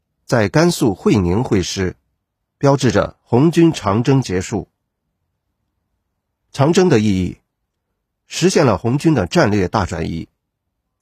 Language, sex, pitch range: Chinese, male, 95-145 Hz